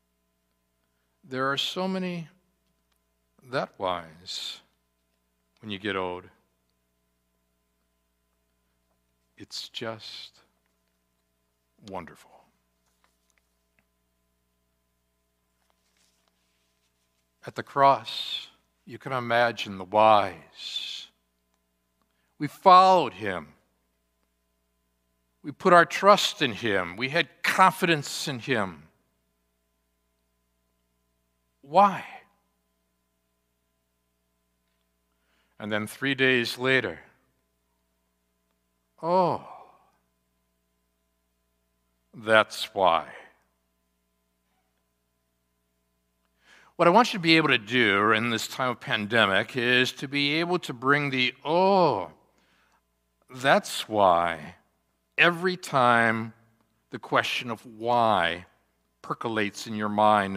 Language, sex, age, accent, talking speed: English, male, 60-79, American, 80 wpm